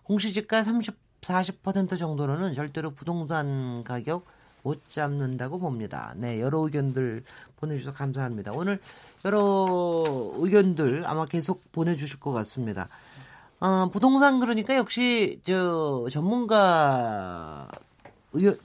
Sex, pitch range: male, 140-200 Hz